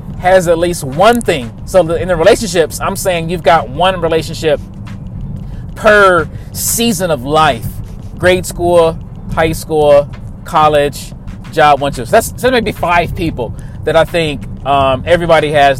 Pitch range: 140-185 Hz